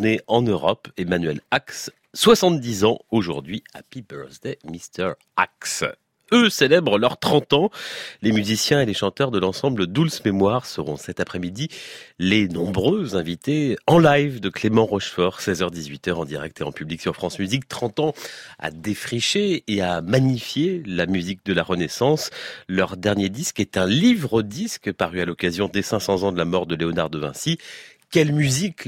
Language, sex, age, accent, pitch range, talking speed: French, male, 40-59, French, 90-125 Hz, 165 wpm